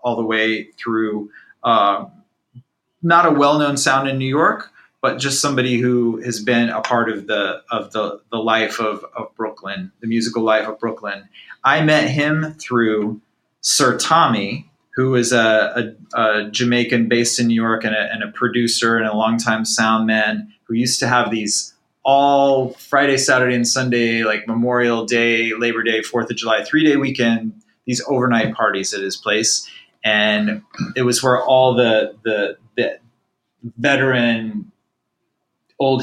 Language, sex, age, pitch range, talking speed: English, male, 30-49, 110-130 Hz, 160 wpm